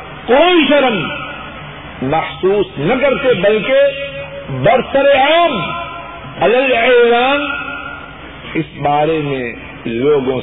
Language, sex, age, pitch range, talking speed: Urdu, male, 50-69, 145-220 Hz, 70 wpm